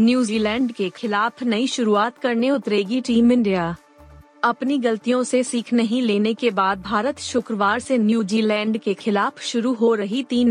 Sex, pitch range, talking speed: female, 205-245 Hz, 155 wpm